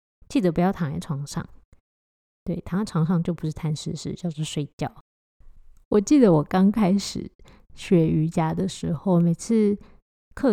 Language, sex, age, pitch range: Chinese, female, 20-39, 175-210 Hz